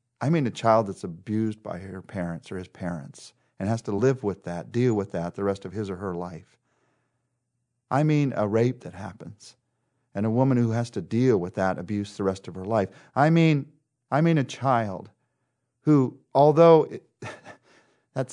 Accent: American